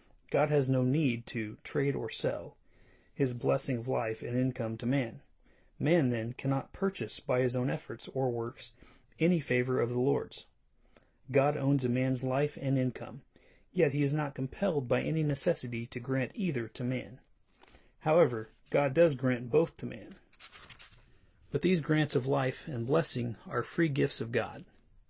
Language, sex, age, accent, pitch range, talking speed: English, male, 30-49, American, 120-145 Hz, 165 wpm